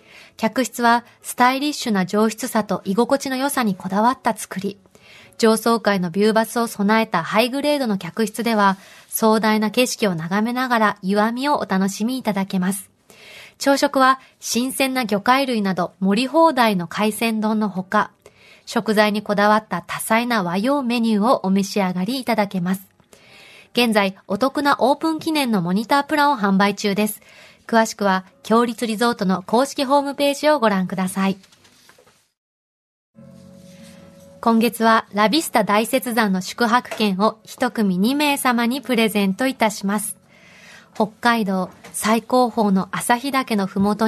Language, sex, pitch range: Japanese, female, 195-245 Hz